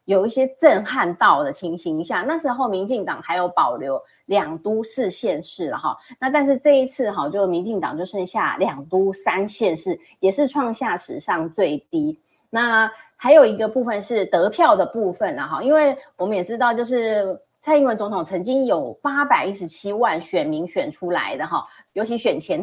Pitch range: 185-280 Hz